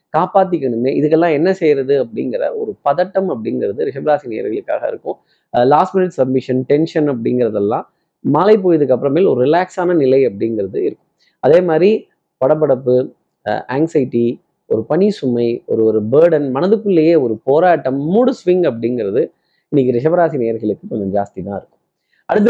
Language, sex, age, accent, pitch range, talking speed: Tamil, male, 30-49, native, 140-185 Hz, 130 wpm